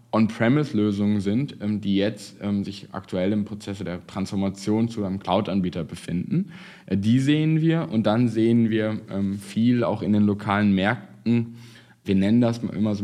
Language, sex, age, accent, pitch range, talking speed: German, male, 10-29, German, 100-125 Hz, 145 wpm